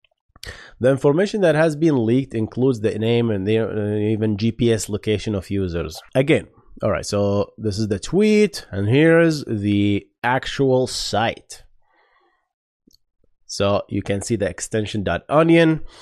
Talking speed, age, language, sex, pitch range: 140 wpm, 30-49, English, male, 100-125 Hz